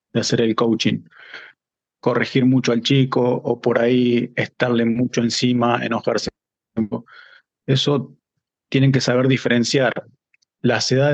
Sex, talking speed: male, 115 wpm